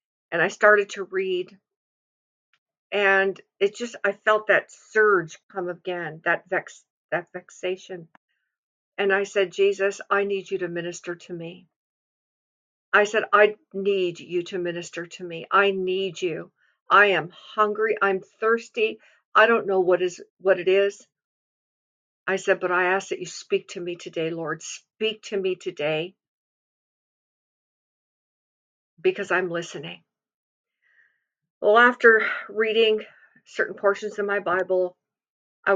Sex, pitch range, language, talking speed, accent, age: female, 180-210 Hz, English, 140 wpm, American, 50-69